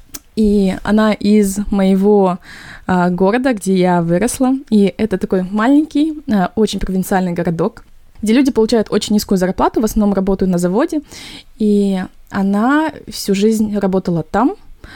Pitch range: 180-220 Hz